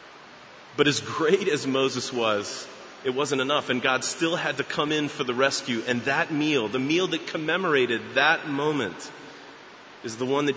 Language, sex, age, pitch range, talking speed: English, male, 30-49, 105-130 Hz, 180 wpm